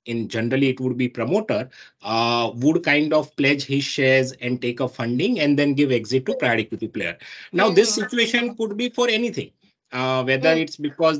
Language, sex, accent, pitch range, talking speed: English, male, Indian, 125-160 Hz, 195 wpm